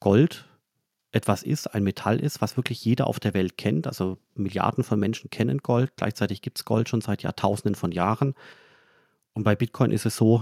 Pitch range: 100-120 Hz